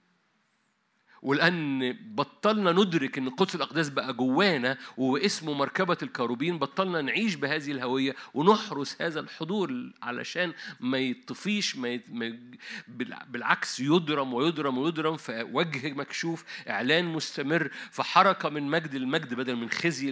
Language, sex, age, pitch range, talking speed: Arabic, male, 50-69, 130-180 Hz, 105 wpm